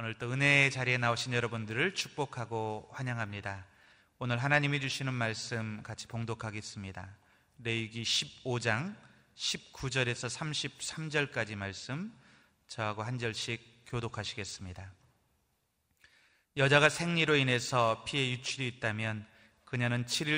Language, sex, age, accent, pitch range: Korean, male, 30-49, native, 110-130 Hz